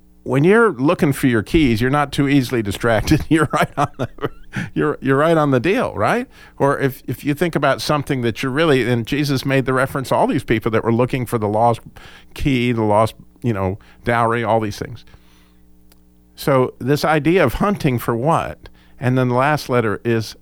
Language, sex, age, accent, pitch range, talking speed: English, male, 50-69, American, 85-140 Hz, 205 wpm